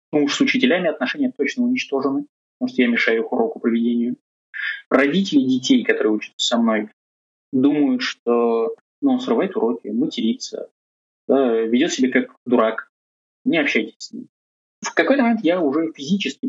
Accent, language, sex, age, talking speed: native, Russian, male, 20-39, 150 wpm